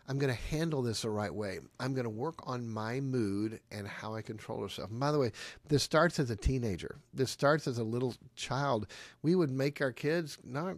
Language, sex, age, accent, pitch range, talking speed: English, male, 50-69, American, 120-160 Hz, 225 wpm